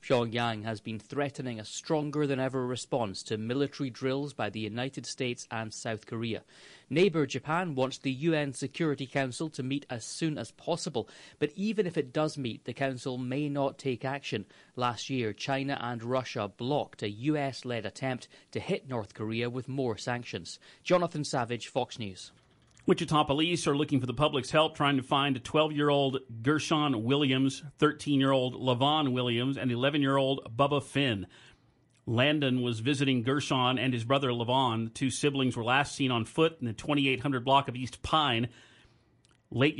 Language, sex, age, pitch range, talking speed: English, male, 30-49, 120-145 Hz, 160 wpm